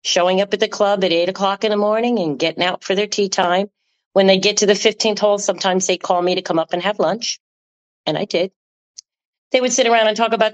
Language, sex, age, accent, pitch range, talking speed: English, female, 40-59, American, 165-210 Hz, 255 wpm